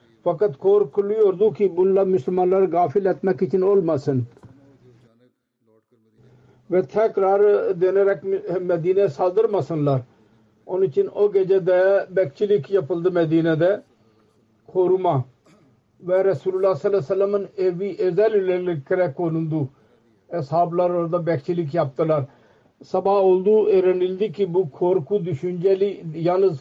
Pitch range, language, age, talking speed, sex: 165-195 Hz, Turkish, 50-69, 100 wpm, male